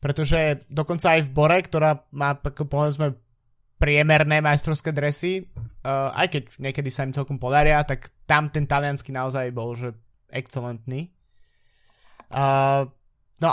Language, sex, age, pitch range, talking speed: Slovak, male, 20-39, 135-155 Hz, 120 wpm